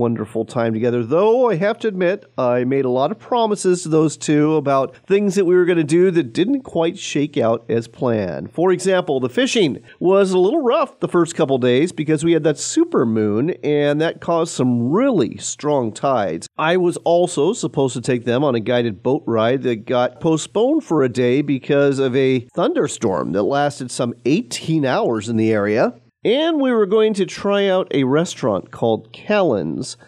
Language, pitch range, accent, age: English, 120-165 Hz, American, 40-59